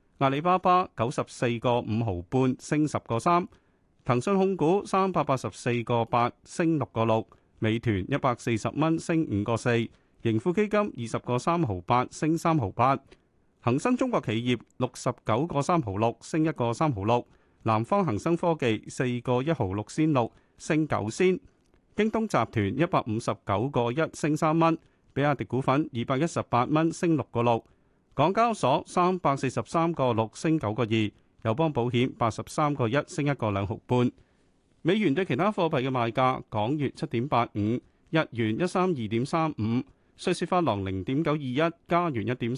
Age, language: 40-59, Chinese